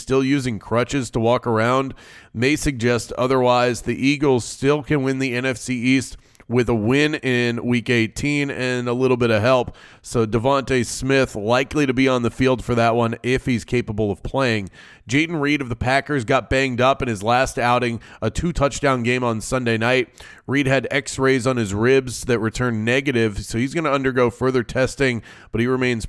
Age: 30-49